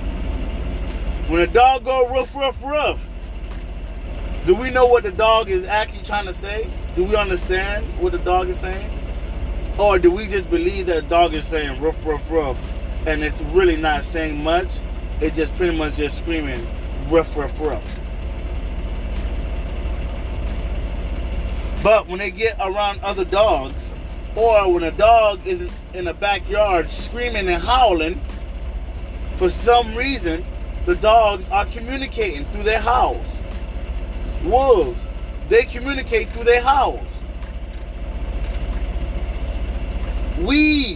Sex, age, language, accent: male, 30-49, English, American